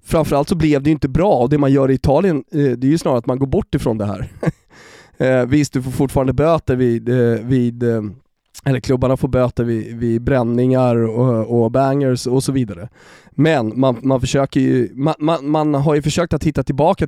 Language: Swedish